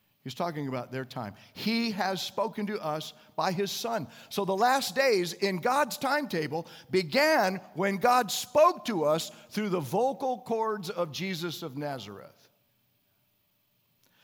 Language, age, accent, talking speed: English, 50-69, American, 145 wpm